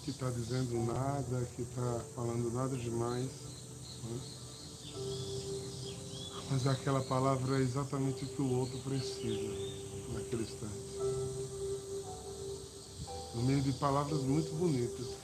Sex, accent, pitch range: male, Brazilian, 120-135 Hz